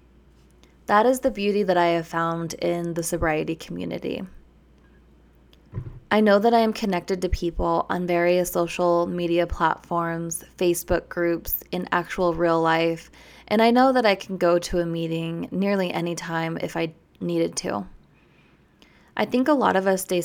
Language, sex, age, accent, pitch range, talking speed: English, female, 20-39, American, 165-195 Hz, 165 wpm